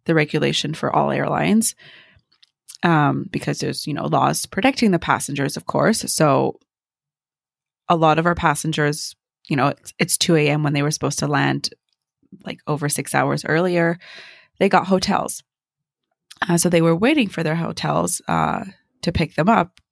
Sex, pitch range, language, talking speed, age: female, 145-175 Hz, English, 165 wpm, 20-39